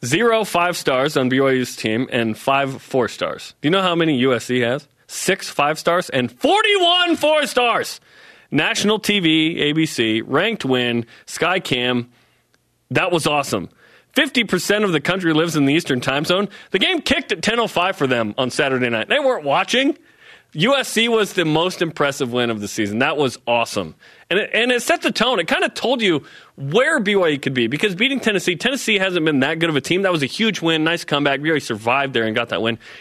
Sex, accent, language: male, American, English